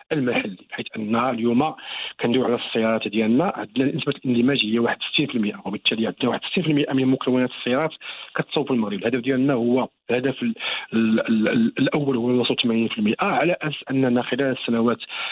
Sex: male